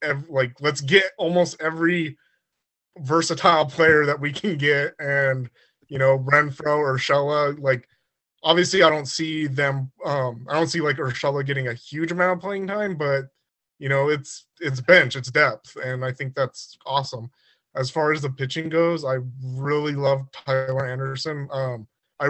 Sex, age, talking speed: male, 20-39, 165 wpm